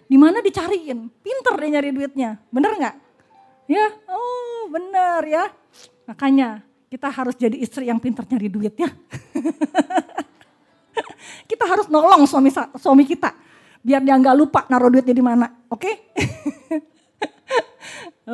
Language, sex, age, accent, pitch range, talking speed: Indonesian, female, 30-49, native, 215-285 Hz, 125 wpm